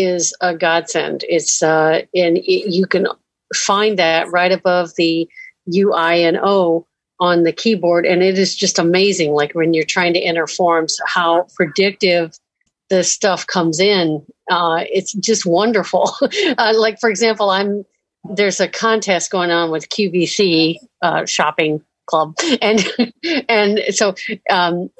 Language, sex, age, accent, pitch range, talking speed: English, female, 50-69, American, 170-205 Hz, 150 wpm